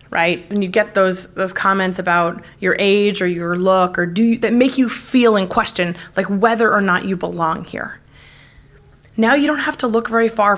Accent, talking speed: American, 210 wpm